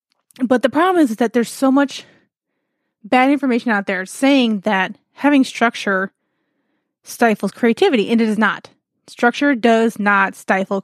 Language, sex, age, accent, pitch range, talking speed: English, female, 20-39, American, 210-260 Hz, 150 wpm